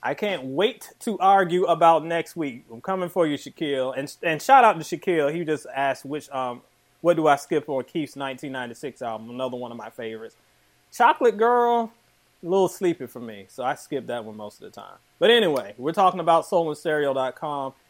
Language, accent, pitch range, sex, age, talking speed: English, American, 140-180 Hz, male, 30-49, 200 wpm